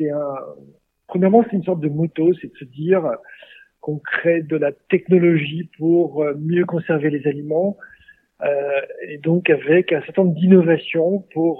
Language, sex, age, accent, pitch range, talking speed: French, male, 50-69, French, 155-185 Hz, 160 wpm